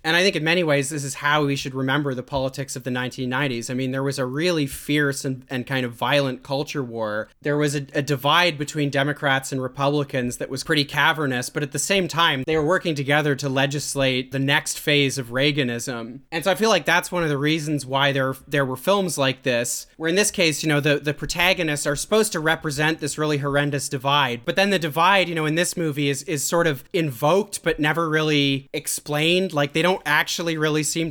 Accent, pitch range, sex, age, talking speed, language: American, 140-165 Hz, male, 30-49, 230 wpm, English